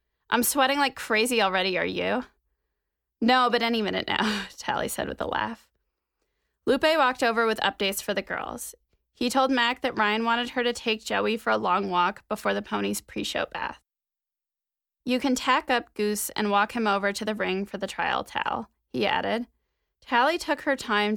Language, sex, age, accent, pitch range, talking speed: English, female, 20-39, American, 195-245 Hz, 185 wpm